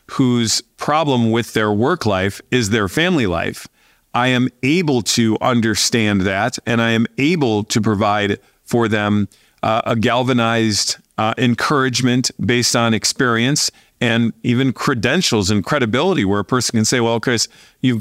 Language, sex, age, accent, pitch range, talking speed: English, male, 40-59, American, 115-135 Hz, 150 wpm